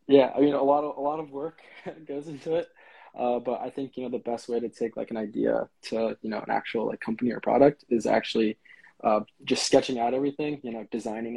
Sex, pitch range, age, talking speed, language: male, 115-135 Hz, 20-39, 245 wpm, English